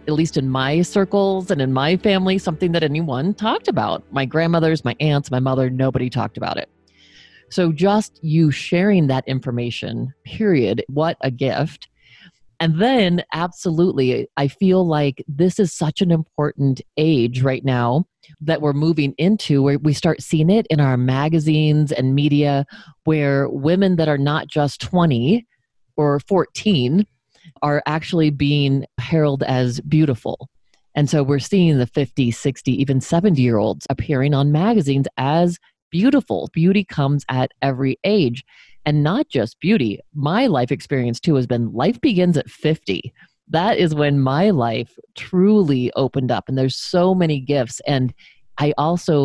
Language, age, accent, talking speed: English, 30-49, American, 155 wpm